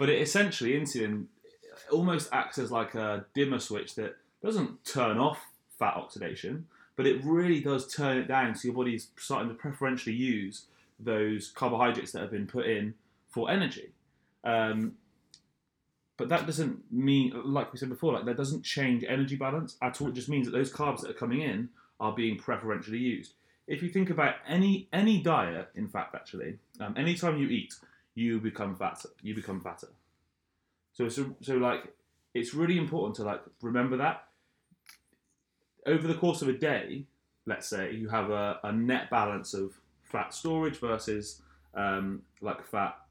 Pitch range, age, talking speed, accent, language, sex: 105-145 Hz, 20-39, 175 wpm, British, English, male